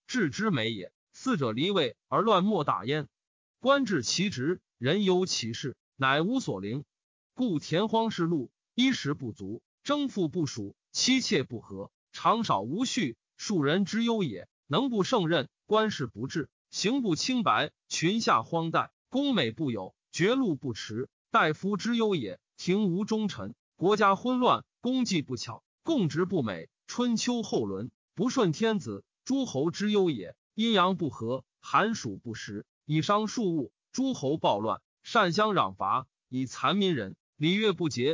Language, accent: Chinese, native